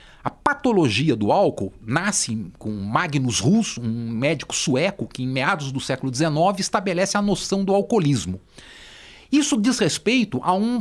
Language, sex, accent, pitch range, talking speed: Portuguese, male, Brazilian, 140-215 Hz, 150 wpm